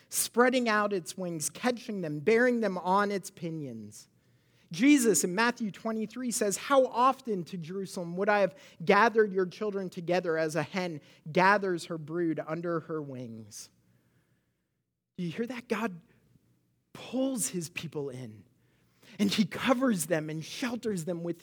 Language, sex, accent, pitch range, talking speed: English, male, American, 170-240 Hz, 150 wpm